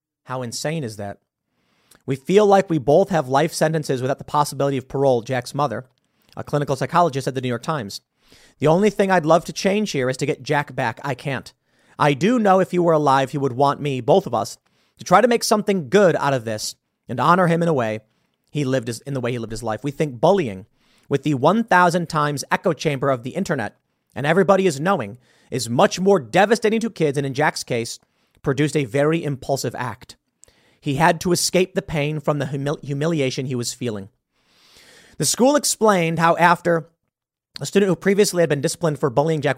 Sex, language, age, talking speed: male, English, 30-49, 210 wpm